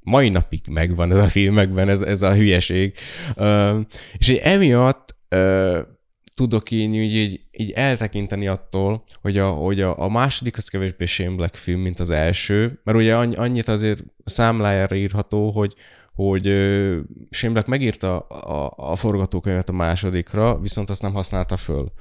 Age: 20-39